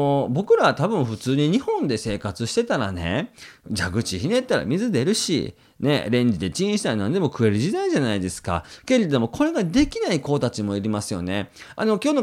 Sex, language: male, Japanese